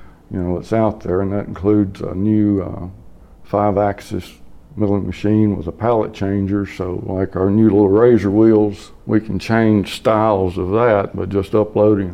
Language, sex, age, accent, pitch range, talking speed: English, male, 60-79, American, 95-105 Hz, 175 wpm